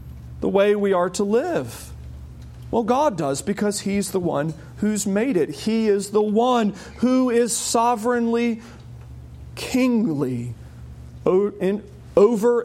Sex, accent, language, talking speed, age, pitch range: male, American, English, 120 wpm, 40-59, 180-270 Hz